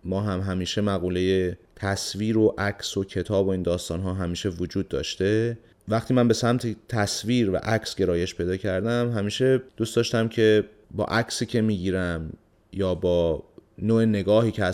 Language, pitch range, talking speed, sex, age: Persian, 90-110 Hz, 160 wpm, male, 30-49